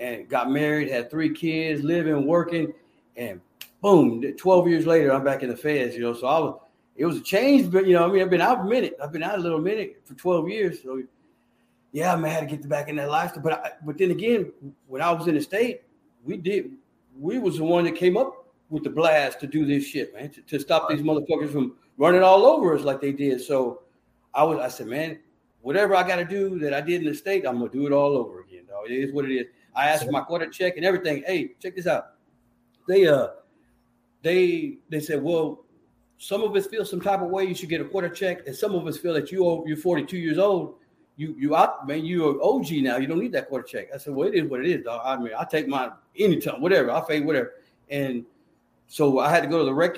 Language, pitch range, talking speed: English, 140-180 Hz, 260 wpm